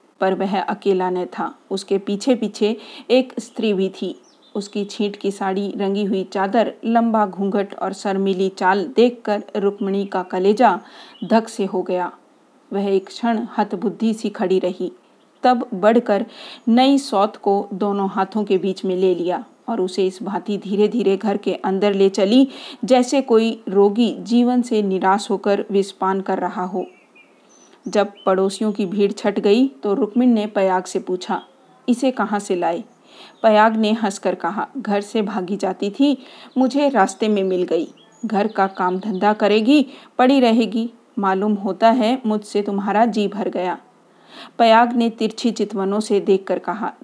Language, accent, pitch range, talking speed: Hindi, native, 195-230 Hz, 160 wpm